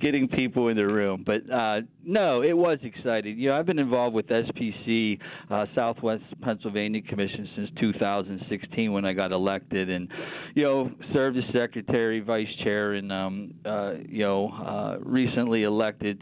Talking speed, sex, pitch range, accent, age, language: 165 wpm, male, 100-120 Hz, American, 40-59, English